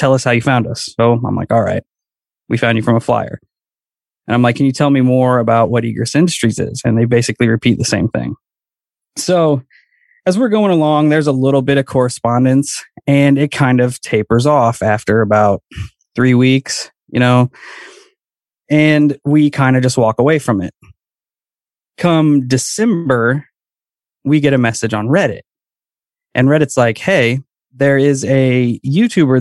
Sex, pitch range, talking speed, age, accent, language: male, 120-145 Hz, 175 wpm, 20-39, American, English